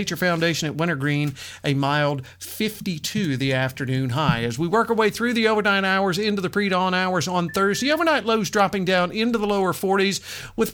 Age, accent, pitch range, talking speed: 50-69, American, 155-210 Hz, 190 wpm